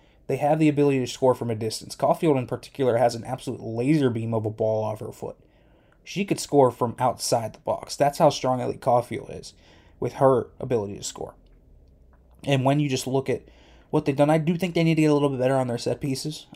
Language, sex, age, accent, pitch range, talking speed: English, male, 20-39, American, 120-140 Hz, 235 wpm